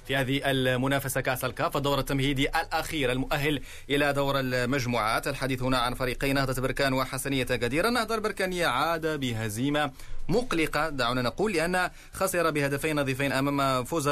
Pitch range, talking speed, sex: 130-155 Hz, 140 wpm, male